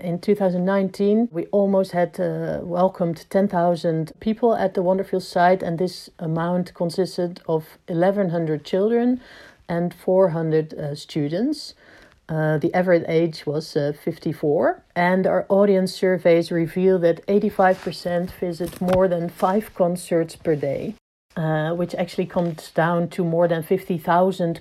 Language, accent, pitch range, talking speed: English, Dutch, 170-195 Hz, 130 wpm